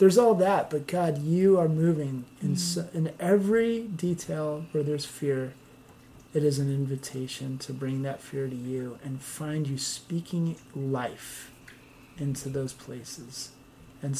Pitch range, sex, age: 130-165 Hz, male, 30-49